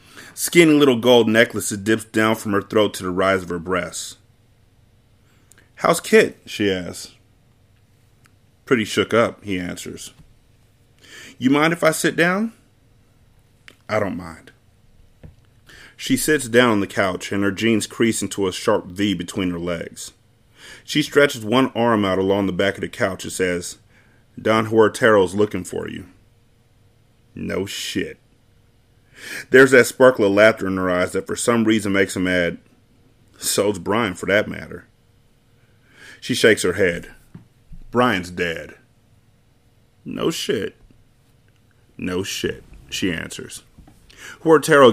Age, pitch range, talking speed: 30-49, 100-120 Hz, 140 wpm